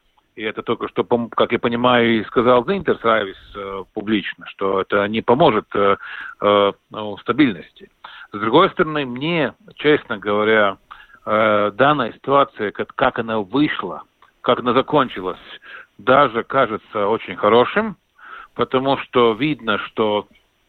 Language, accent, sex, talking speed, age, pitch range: Russian, native, male, 120 wpm, 50-69, 105-130 Hz